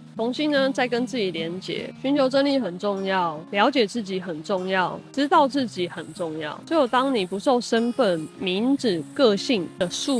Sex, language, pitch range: female, Chinese, 185-255 Hz